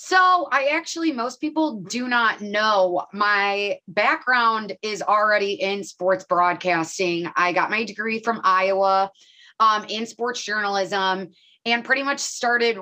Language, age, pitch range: English, 20-39, 190-235 Hz